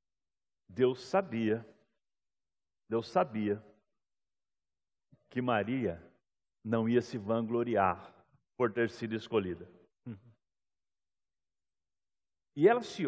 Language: Portuguese